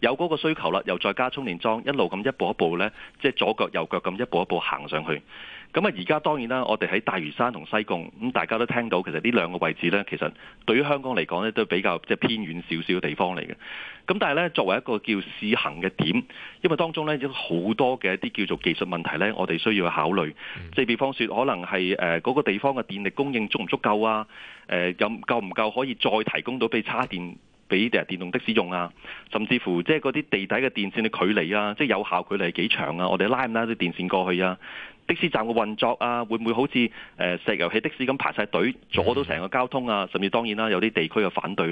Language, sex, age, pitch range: Chinese, male, 30-49, 90-120 Hz